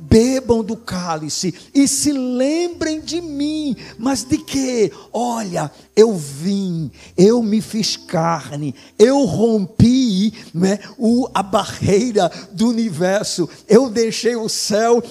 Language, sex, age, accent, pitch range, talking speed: Portuguese, male, 50-69, Brazilian, 195-265 Hz, 110 wpm